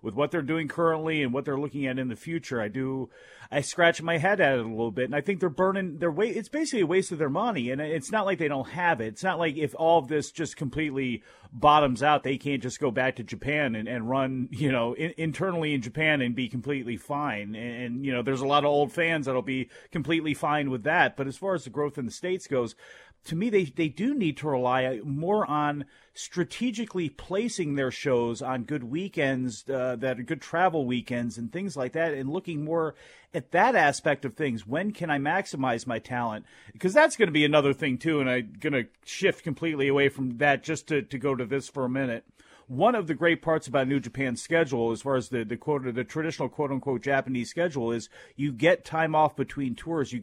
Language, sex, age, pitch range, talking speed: English, male, 40-59, 125-160 Hz, 235 wpm